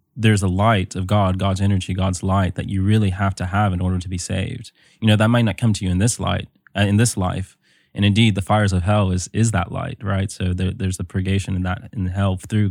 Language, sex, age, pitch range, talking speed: English, male, 20-39, 95-105 Hz, 260 wpm